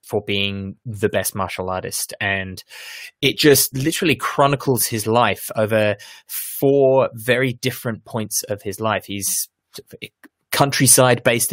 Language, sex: English, male